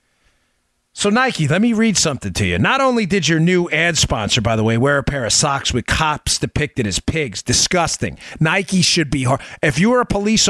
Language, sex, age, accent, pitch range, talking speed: English, male, 40-59, American, 135-195 Hz, 215 wpm